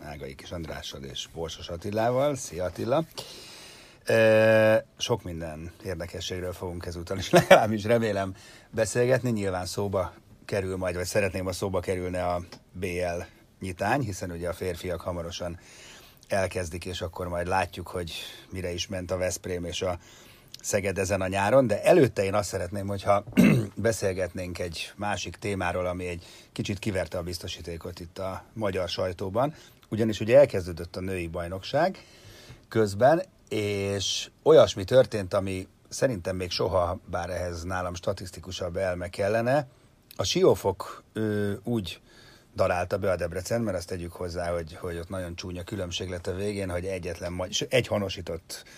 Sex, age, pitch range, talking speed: male, 30-49, 90-105 Hz, 145 wpm